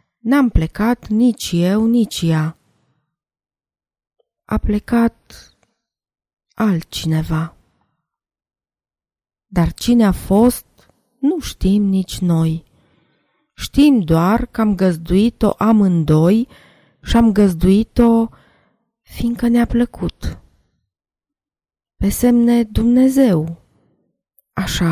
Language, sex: Romanian, female